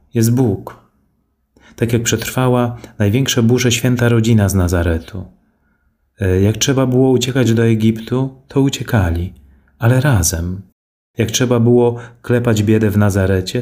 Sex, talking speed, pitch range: male, 125 wpm, 95-120 Hz